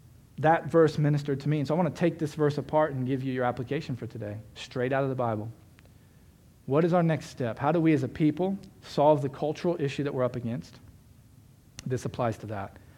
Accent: American